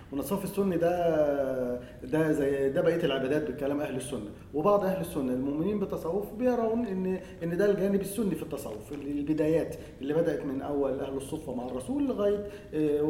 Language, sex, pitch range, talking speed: Arabic, male, 140-200 Hz, 155 wpm